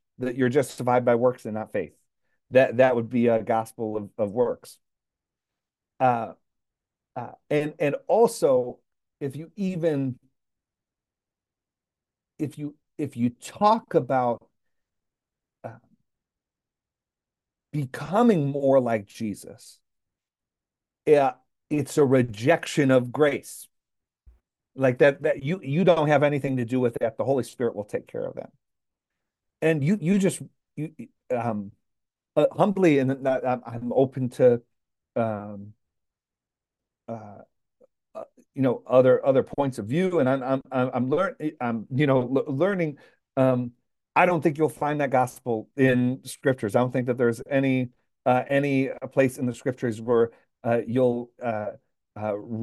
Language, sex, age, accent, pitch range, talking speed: English, male, 50-69, American, 115-140 Hz, 140 wpm